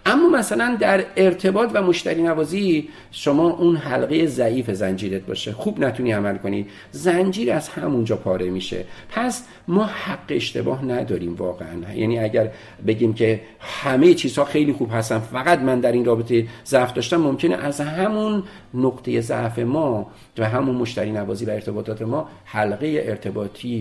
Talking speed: 150 wpm